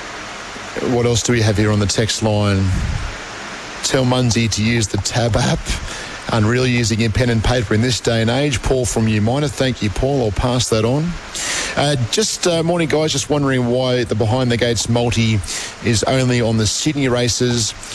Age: 40-59